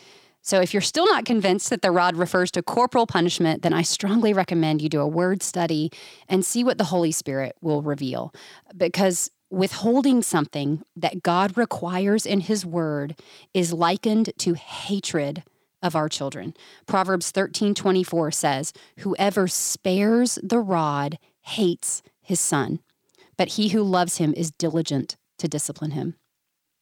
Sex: female